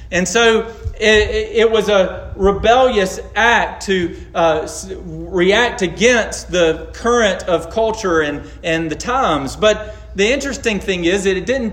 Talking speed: 145 wpm